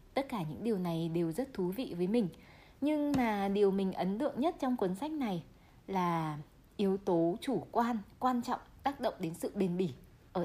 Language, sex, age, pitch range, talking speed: Vietnamese, female, 20-39, 180-245 Hz, 205 wpm